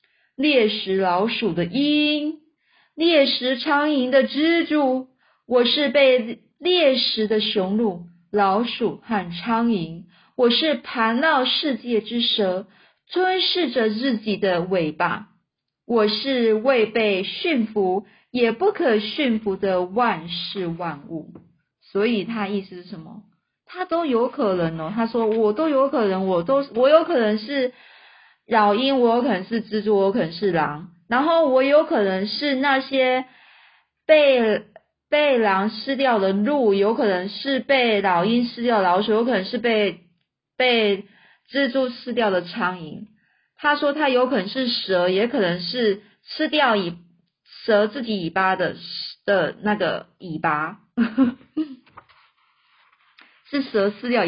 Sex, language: female, Chinese